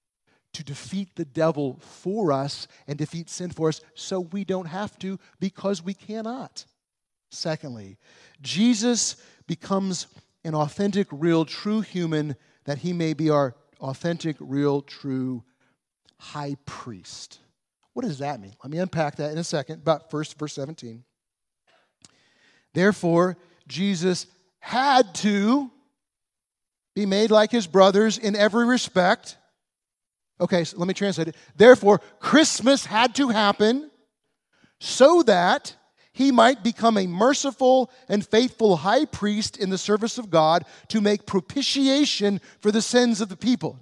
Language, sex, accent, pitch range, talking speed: English, male, American, 155-225 Hz, 135 wpm